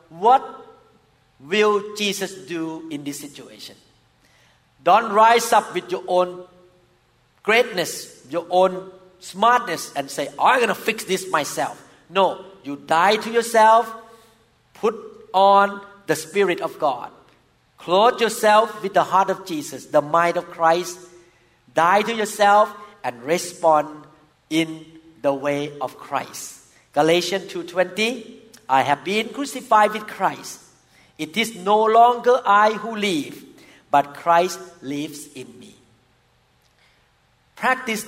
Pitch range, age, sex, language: 155-210 Hz, 50-69, male, Thai